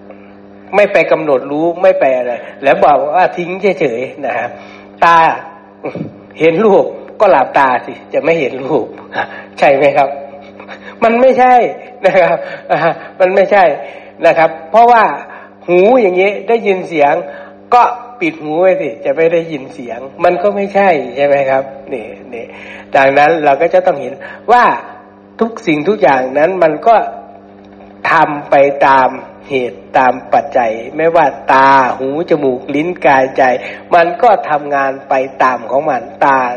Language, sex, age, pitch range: Thai, male, 60-79, 135-185 Hz